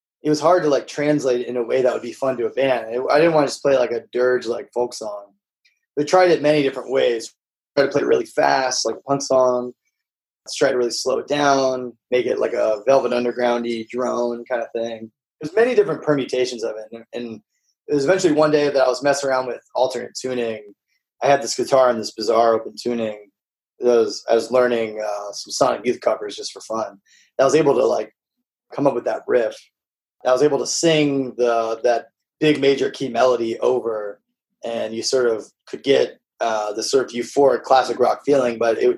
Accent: American